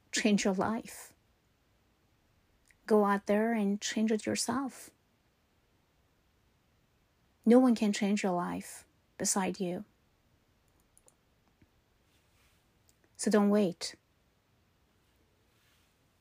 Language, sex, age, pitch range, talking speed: English, female, 30-49, 175-215 Hz, 80 wpm